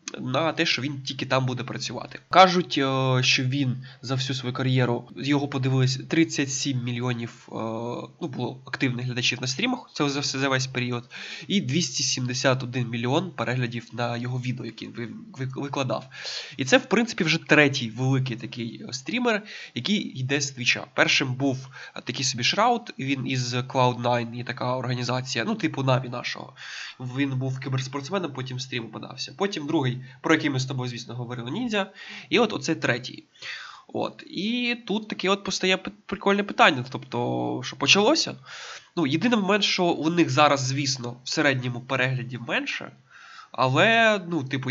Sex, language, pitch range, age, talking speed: male, Ukrainian, 125-160 Hz, 20-39, 155 wpm